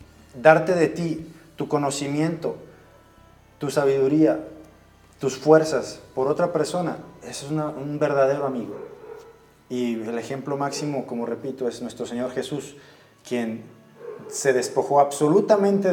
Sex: male